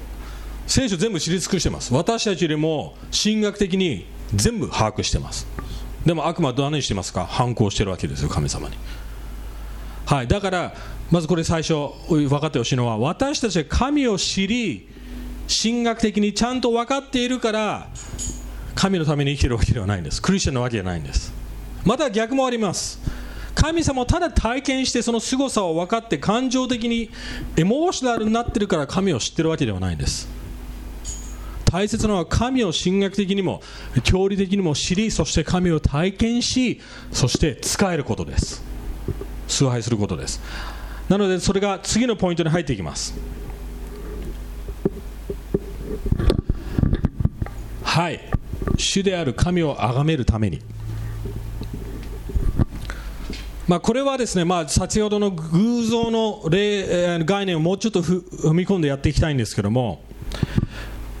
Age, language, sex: 40-59, English, male